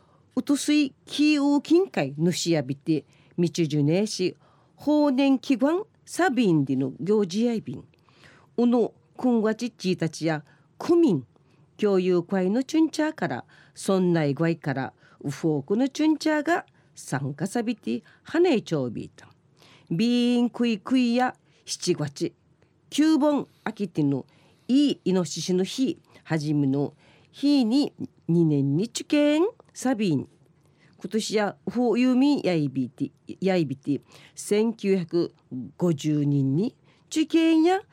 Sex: female